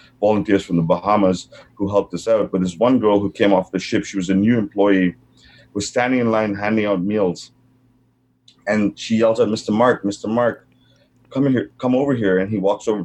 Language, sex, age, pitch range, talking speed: English, male, 30-49, 95-110 Hz, 215 wpm